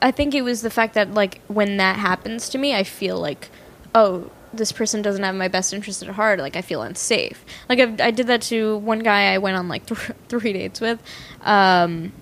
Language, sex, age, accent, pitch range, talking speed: English, female, 10-29, American, 195-230 Hz, 230 wpm